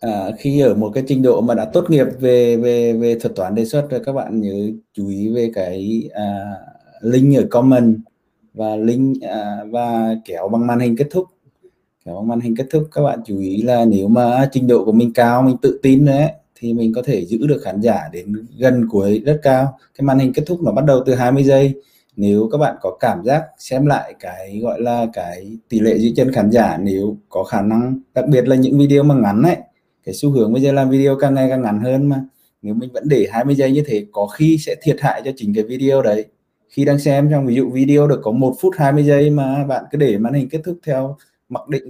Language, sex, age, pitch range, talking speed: Vietnamese, male, 20-39, 115-145 Hz, 245 wpm